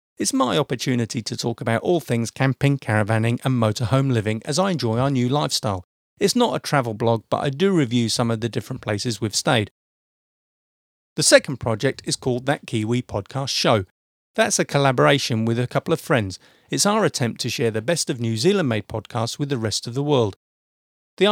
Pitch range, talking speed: 110-145 Hz, 200 wpm